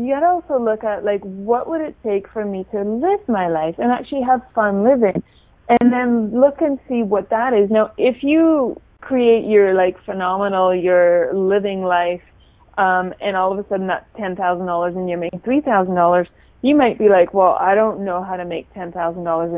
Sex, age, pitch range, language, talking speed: female, 30-49, 185-230 Hz, English, 195 wpm